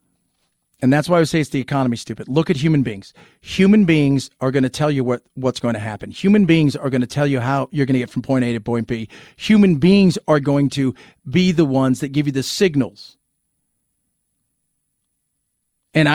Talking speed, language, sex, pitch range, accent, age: 210 wpm, English, male, 130-165 Hz, American, 40-59